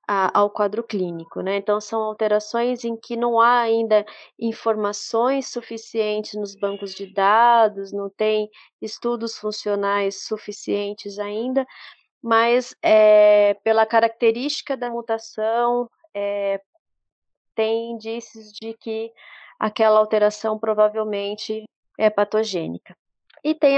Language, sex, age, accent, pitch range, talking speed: Portuguese, female, 30-49, Brazilian, 210-250 Hz, 100 wpm